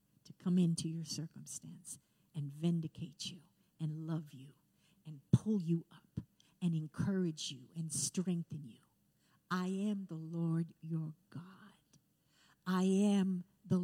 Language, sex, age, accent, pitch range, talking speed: English, female, 50-69, American, 160-200 Hz, 125 wpm